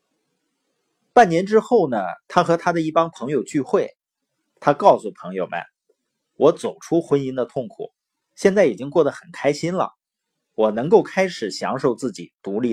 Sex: male